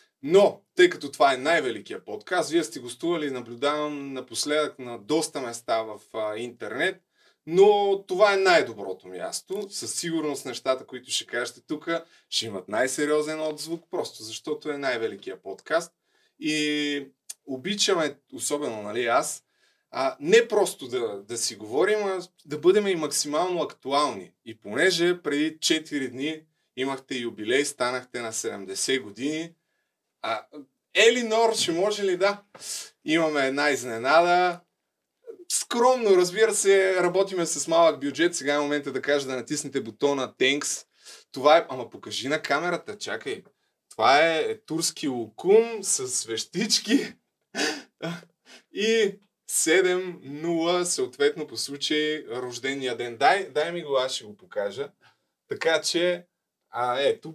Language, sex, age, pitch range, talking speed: Bulgarian, male, 20-39, 135-195 Hz, 135 wpm